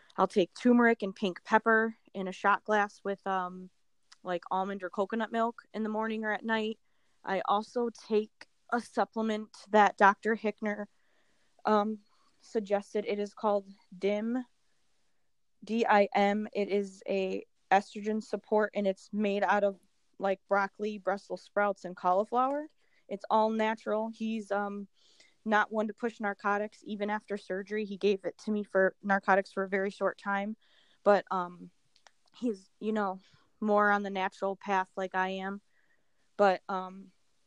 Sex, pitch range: female, 195-220 Hz